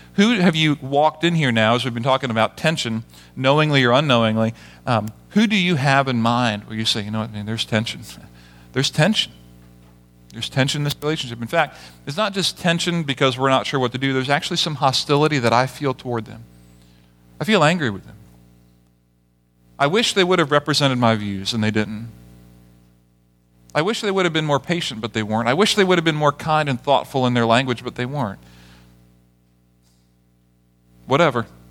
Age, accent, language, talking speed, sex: 40-59, American, English, 205 wpm, male